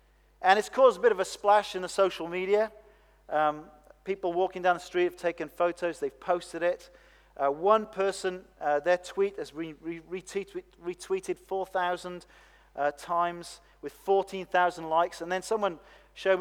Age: 40-59